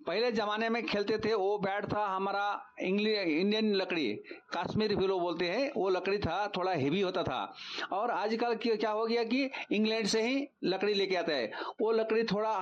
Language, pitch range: English, 185-220 Hz